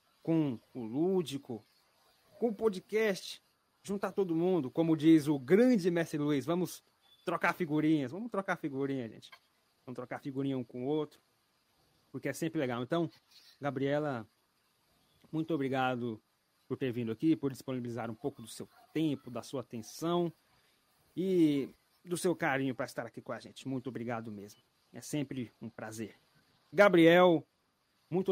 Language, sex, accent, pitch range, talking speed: Portuguese, male, Brazilian, 120-165 Hz, 150 wpm